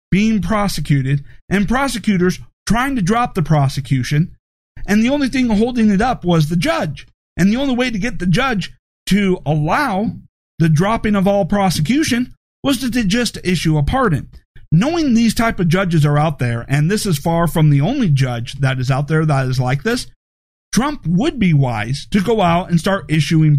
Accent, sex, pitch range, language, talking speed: American, male, 145-205 Hz, English, 190 wpm